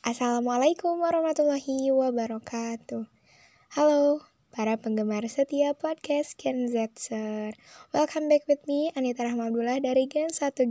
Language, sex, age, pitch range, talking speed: Indonesian, female, 10-29, 215-260 Hz, 105 wpm